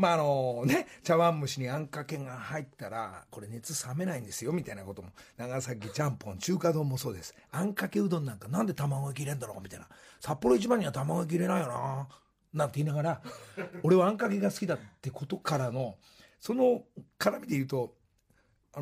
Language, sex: Japanese, male